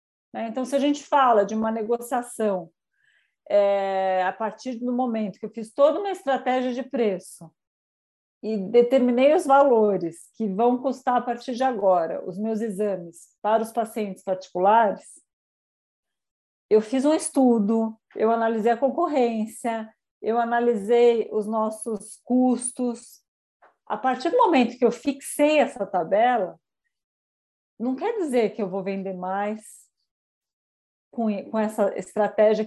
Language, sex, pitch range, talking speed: Portuguese, female, 205-255 Hz, 130 wpm